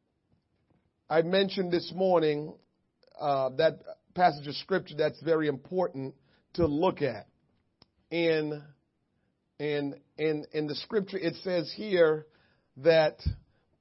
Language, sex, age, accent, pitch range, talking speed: English, male, 40-59, American, 140-180 Hz, 110 wpm